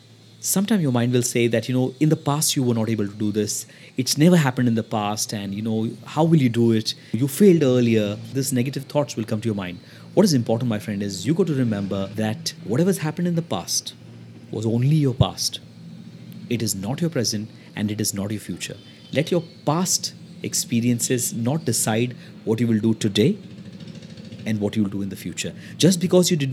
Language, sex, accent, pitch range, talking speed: English, male, Indian, 110-145 Hz, 220 wpm